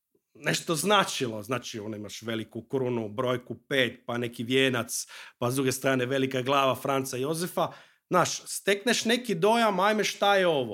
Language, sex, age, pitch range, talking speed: Croatian, male, 30-49, 130-200 Hz, 155 wpm